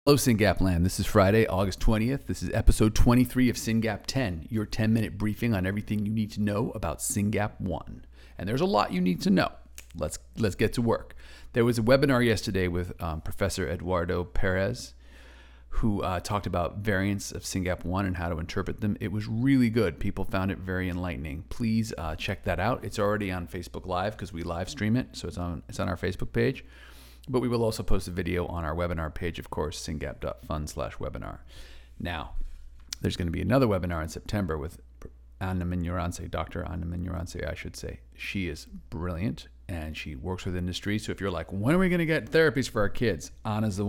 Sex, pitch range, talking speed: male, 85-110 Hz, 210 wpm